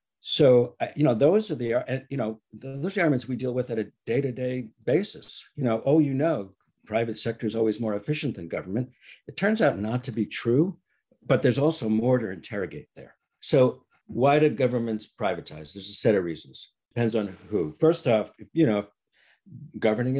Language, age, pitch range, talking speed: English, 60-79, 105-140 Hz, 190 wpm